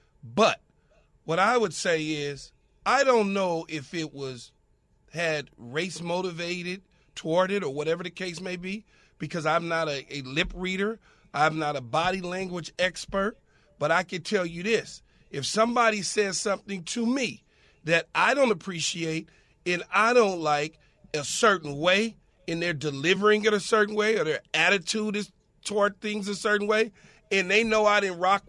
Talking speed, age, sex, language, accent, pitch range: 170 wpm, 40-59, male, English, American, 170-215 Hz